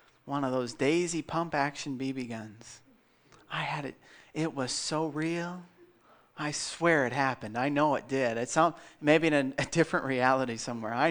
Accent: American